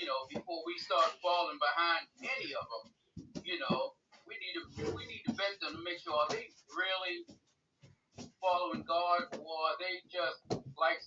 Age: 40-59